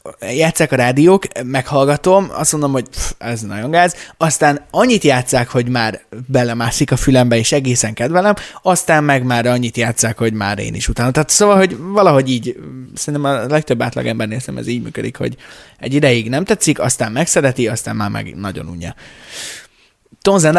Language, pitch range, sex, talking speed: Hungarian, 115-150 Hz, male, 165 wpm